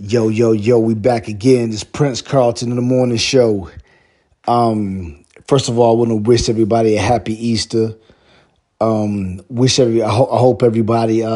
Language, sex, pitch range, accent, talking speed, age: English, male, 105-120 Hz, American, 175 wpm, 30-49